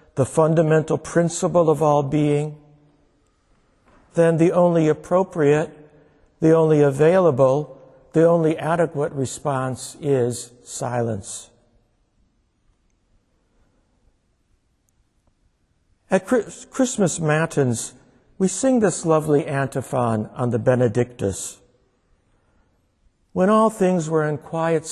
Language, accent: English, American